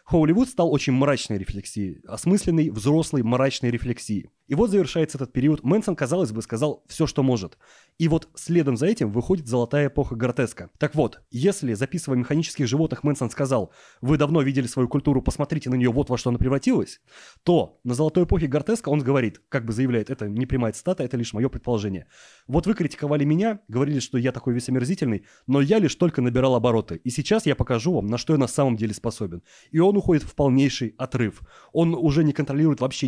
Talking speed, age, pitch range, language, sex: 195 wpm, 30-49, 125-155 Hz, Russian, male